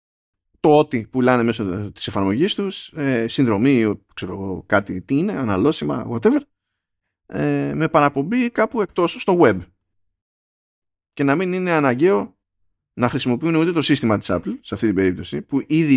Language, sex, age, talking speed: Greek, male, 20-39, 155 wpm